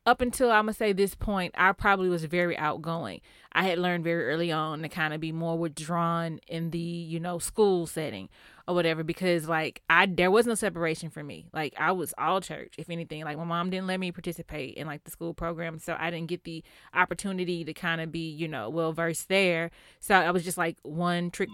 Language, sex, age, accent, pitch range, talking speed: English, female, 20-39, American, 165-190 Hz, 230 wpm